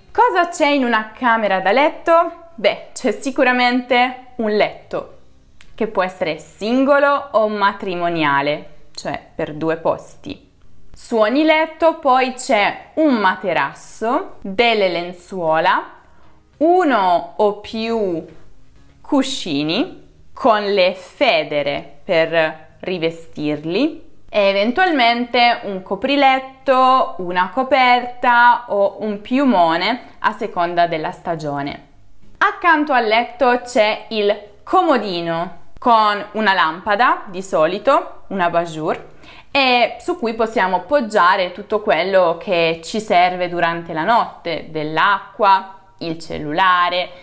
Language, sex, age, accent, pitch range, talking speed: Italian, female, 20-39, native, 175-255 Hz, 105 wpm